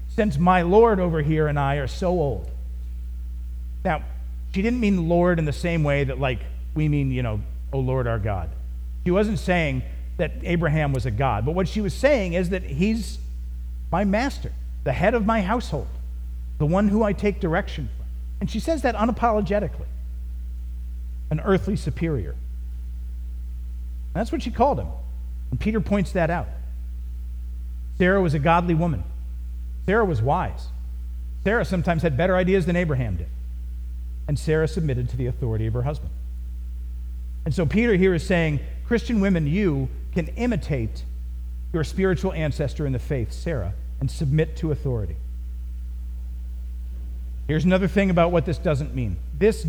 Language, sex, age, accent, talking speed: English, male, 50-69, American, 160 wpm